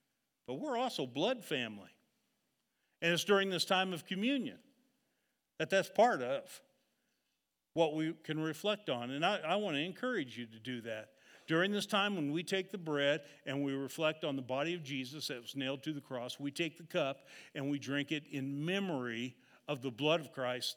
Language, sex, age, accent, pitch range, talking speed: English, male, 50-69, American, 130-175 Hz, 195 wpm